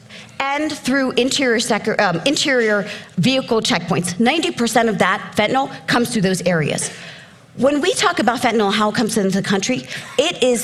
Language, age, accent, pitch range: English, 40-59, American, 185-240 Hz